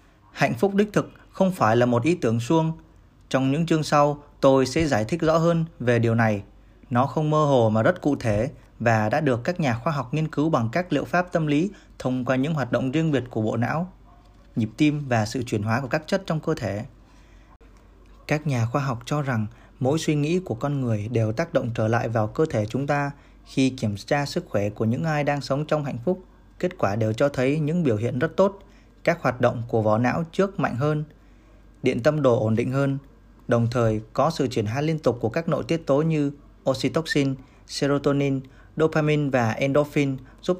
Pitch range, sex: 115-155 Hz, male